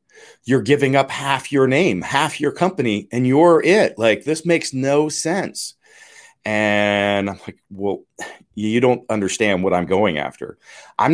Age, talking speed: 40-59, 155 wpm